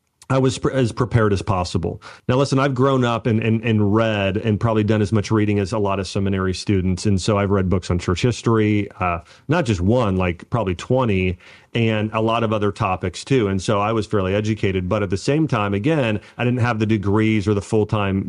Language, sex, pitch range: English, male, 100-130 Hz